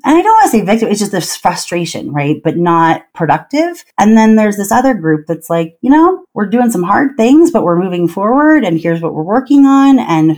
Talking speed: 235 wpm